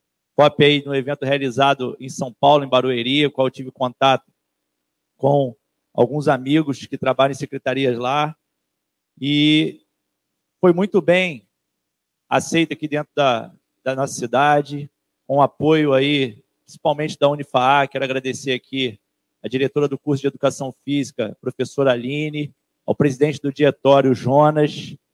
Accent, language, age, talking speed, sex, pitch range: Brazilian, Portuguese, 40-59, 140 wpm, male, 130-155 Hz